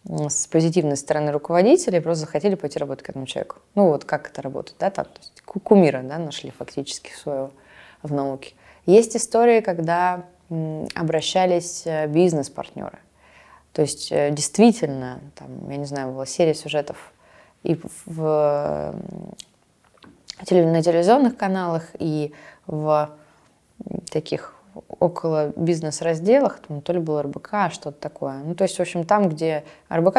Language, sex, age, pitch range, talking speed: Russian, female, 20-39, 145-180 Hz, 130 wpm